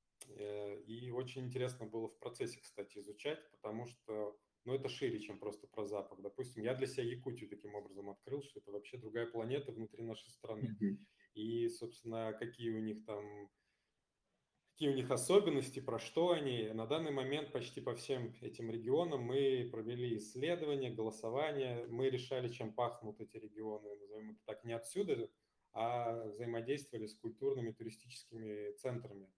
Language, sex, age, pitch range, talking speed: Russian, male, 20-39, 110-130 Hz, 155 wpm